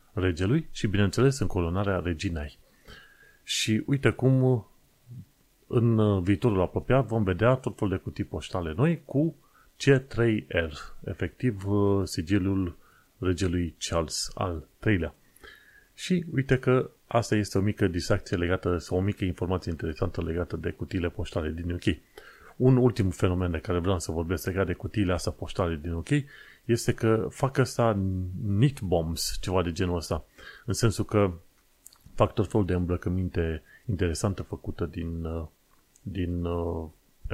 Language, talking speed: Romanian, 135 wpm